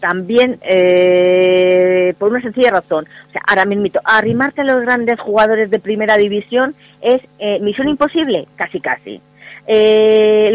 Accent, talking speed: Spanish, 140 wpm